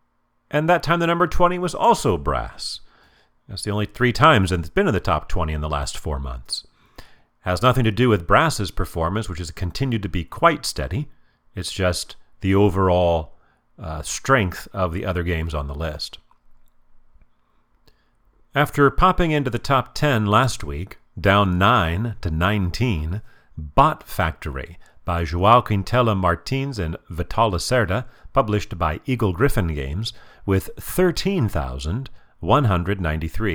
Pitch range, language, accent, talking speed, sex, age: 85-125 Hz, English, American, 145 wpm, male, 40-59